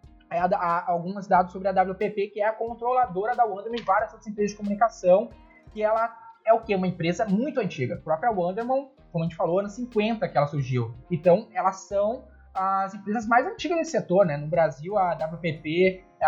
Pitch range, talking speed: 170-220 Hz, 200 wpm